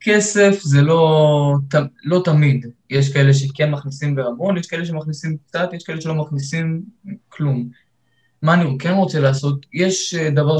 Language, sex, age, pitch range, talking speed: Hebrew, male, 20-39, 130-160 Hz, 155 wpm